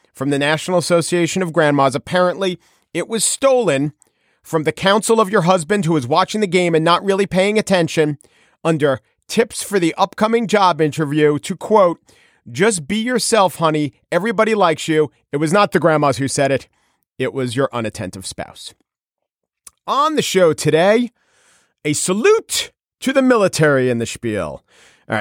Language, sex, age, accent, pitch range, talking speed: English, male, 40-59, American, 135-195 Hz, 160 wpm